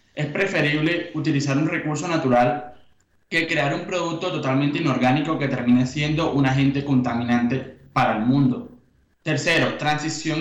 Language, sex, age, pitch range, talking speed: Spanish, male, 20-39, 135-165 Hz, 135 wpm